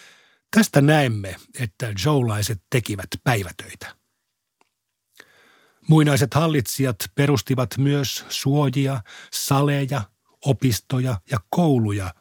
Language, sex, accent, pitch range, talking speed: Finnish, male, native, 115-145 Hz, 75 wpm